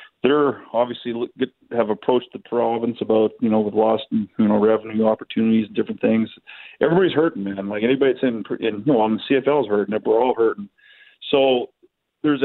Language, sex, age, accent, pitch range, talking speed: English, male, 40-59, American, 115-140 Hz, 180 wpm